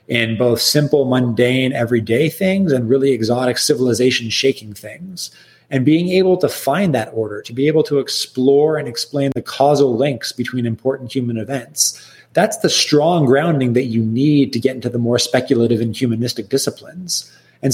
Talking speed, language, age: 165 wpm, English, 30-49